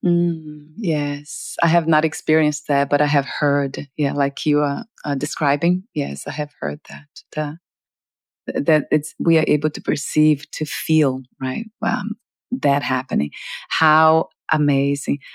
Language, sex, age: English, female, 30-49